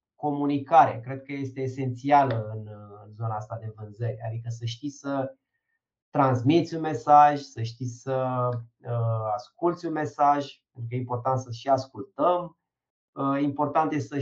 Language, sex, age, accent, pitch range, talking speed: Romanian, male, 20-39, native, 125-150 Hz, 140 wpm